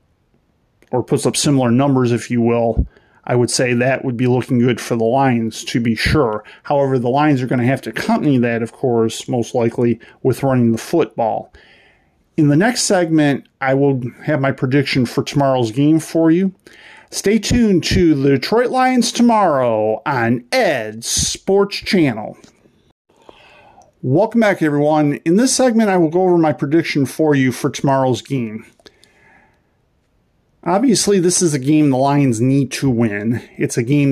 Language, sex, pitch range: English, male, 120-160 Hz